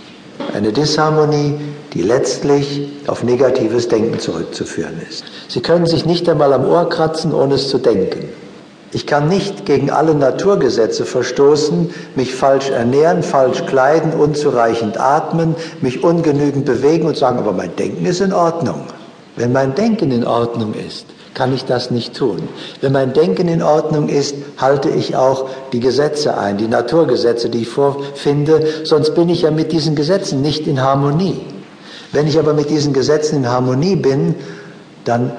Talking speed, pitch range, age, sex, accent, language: 160 wpm, 120-155 Hz, 60-79, male, German, German